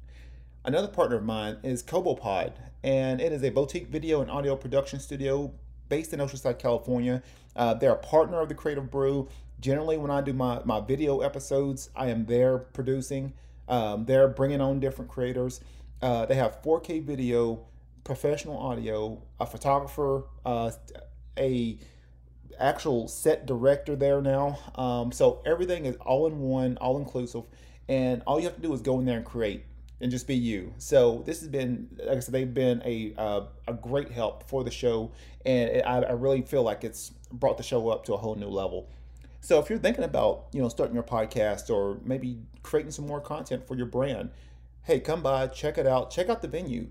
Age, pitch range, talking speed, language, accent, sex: 30-49, 115-140 Hz, 190 wpm, English, American, male